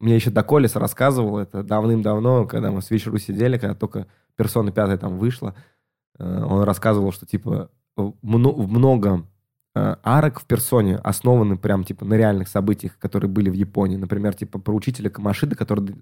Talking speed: 155 wpm